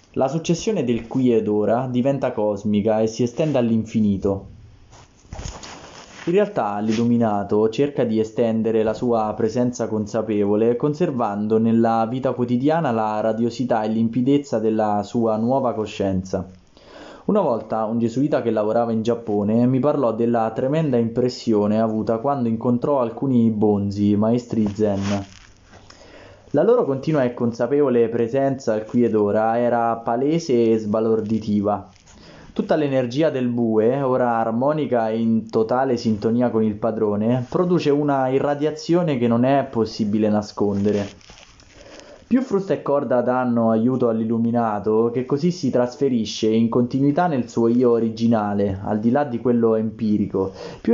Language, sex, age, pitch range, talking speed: Italian, male, 20-39, 110-125 Hz, 135 wpm